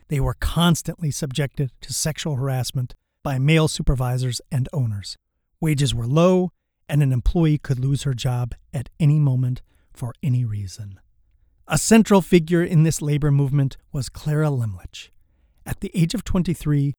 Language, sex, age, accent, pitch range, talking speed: English, male, 40-59, American, 115-155 Hz, 155 wpm